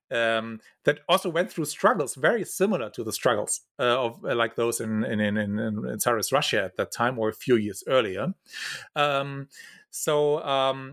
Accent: German